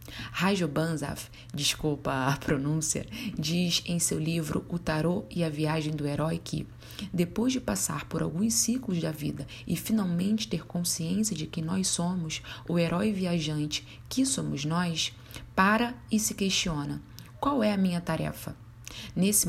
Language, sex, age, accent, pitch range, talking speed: Portuguese, female, 20-39, Brazilian, 155-185 Hz, 150 wpm